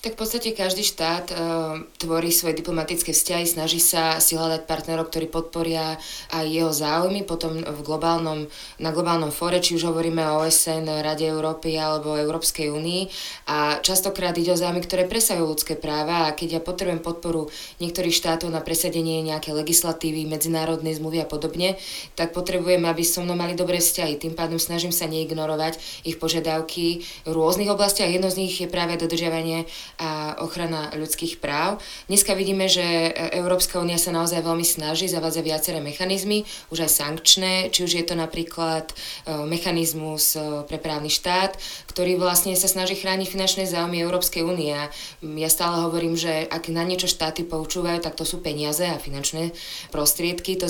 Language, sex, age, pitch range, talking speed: Slovak, female, 20-39, 160-175 Hz, 165 wpm